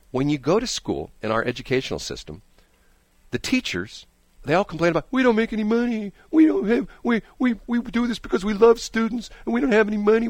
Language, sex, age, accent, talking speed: English, male, 50-69, American, 220 wpm